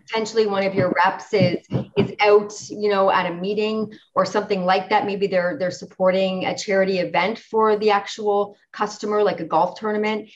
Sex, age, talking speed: female, 30-49, 185 wpm